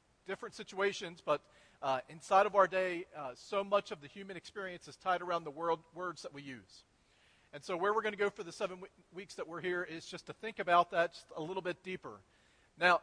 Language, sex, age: English, male, 40-59